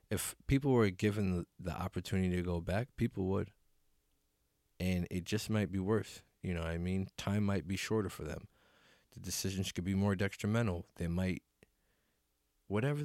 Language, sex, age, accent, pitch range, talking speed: English, male, 20-39, American, 85-100 Hz, 170 wpm